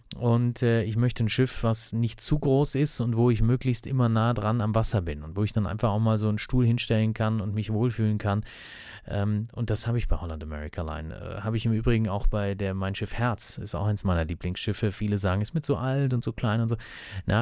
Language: German